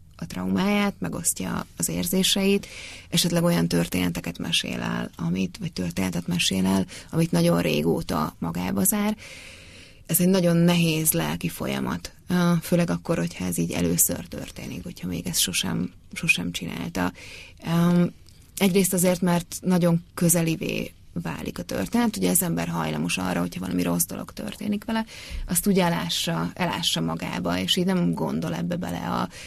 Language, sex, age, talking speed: Hungarian, female, 30-49, 140 wpm